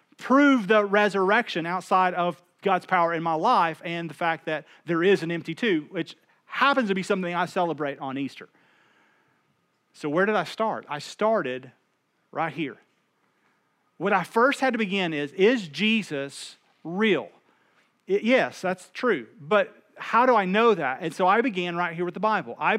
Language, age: English, 40-59